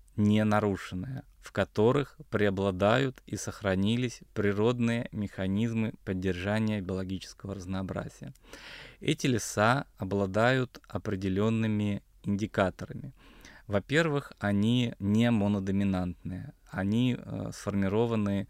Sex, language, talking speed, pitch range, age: male, Russian, 70 wpm, 95-115 Hz, 20-39